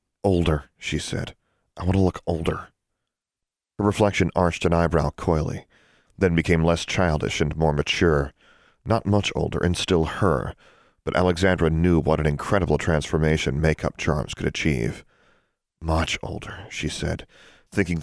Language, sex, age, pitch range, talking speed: English, male, 40-59, 75-90 Hz, 145 wpm